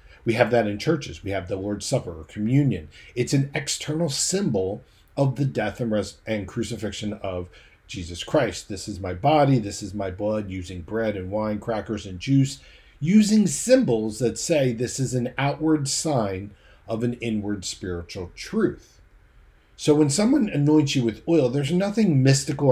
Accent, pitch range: American, 95-125 Hz